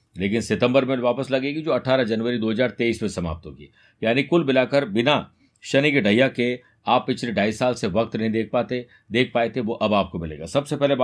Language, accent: Hindi, native